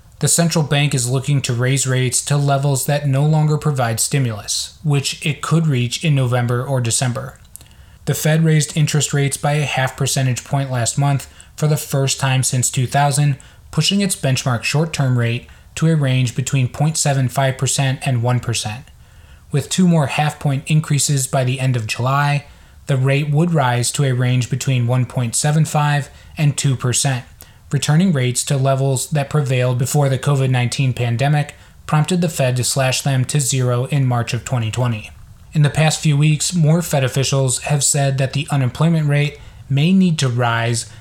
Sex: male